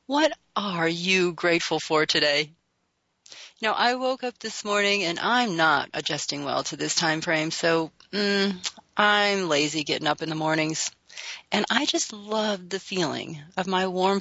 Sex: female